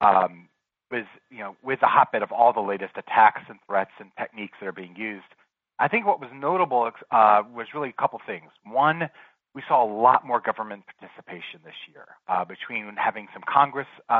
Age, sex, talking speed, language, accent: 30-49, male, 200 wpm, English, American